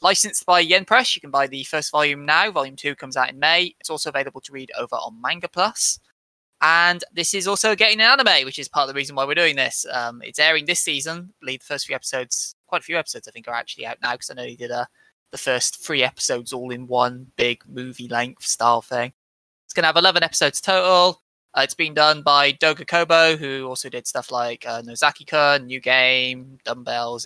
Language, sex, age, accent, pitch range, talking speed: English, male, 20-39, British, 125-175 Hz, 230 wpm